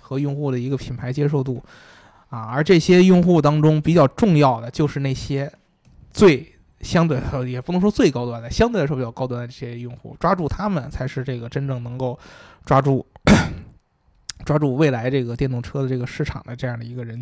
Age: 20-39